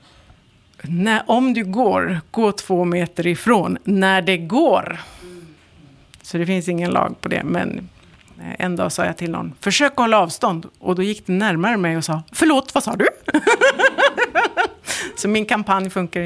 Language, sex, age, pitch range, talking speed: Swedish, female, 50-69, 175-245 Hz, 160 wpm